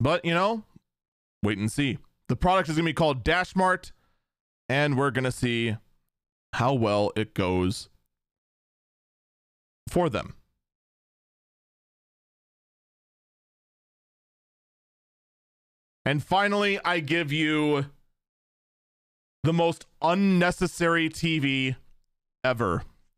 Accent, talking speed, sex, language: American, 95 wpm, male, English